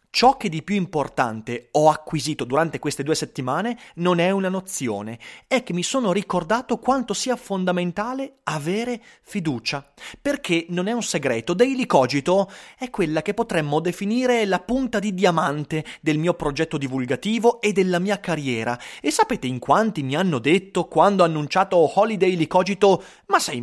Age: 30-49